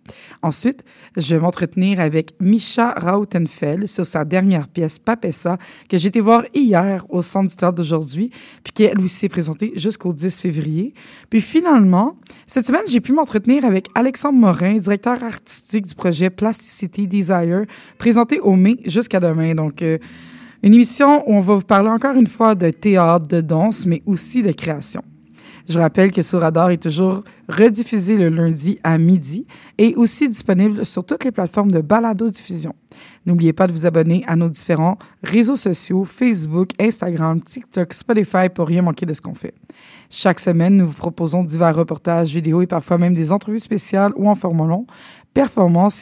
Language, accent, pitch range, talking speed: French, Canadian, 170-220 Hz, 180 wpm